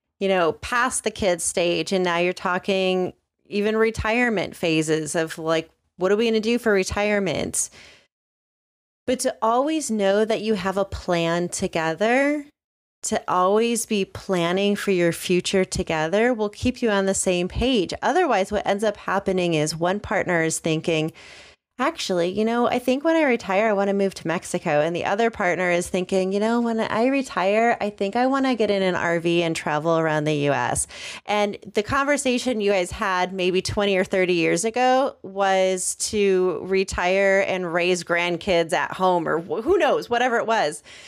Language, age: English, 30-49